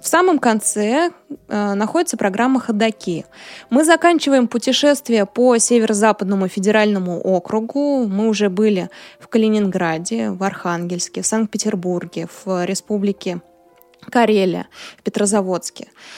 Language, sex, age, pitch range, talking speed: Russian, female, 20-39, 200-250 Hz, 105 wpm